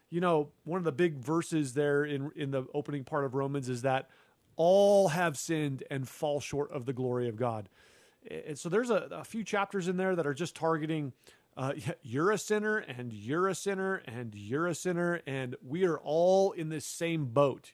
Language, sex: English, male